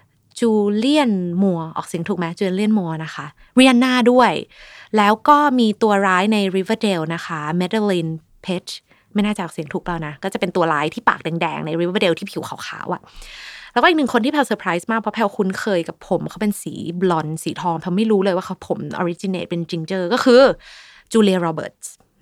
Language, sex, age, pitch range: Thai, female, 20-39, 175-225 Hz